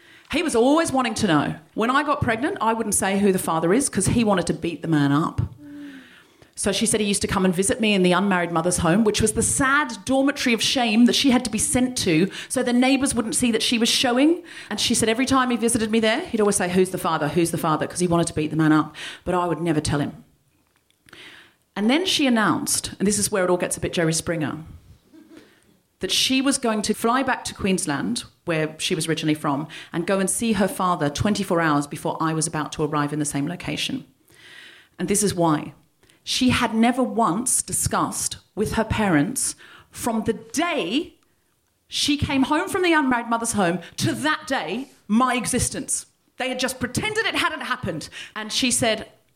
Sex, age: female, 40-59